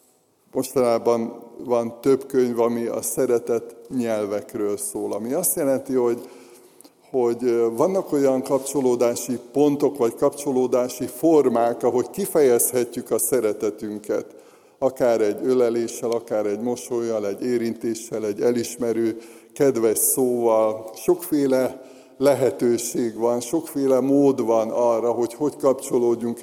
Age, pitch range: 60-79, 115-135 Hz